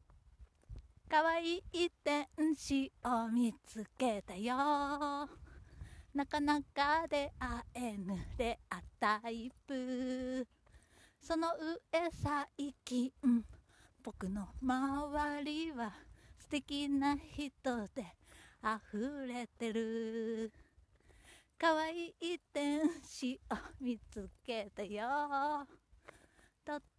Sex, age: female, 30-49